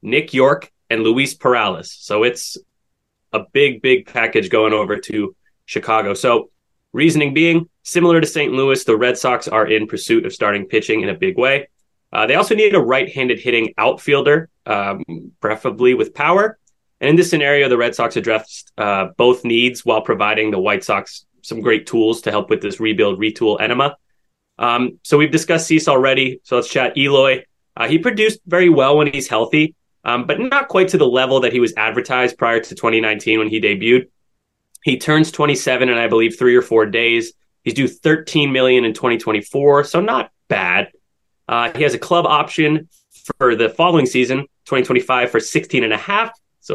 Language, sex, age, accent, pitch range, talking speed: English, male, 30-49, American, 115-155 Hz, 185 wpm